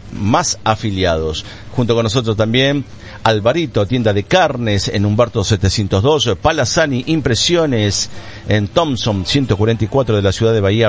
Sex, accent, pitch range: male, Argentinian, 100-120 Hz